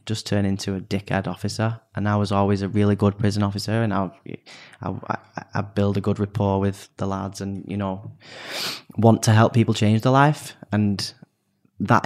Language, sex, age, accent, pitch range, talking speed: English, male, 10-29, British, 100-115 Hz, 195 wpm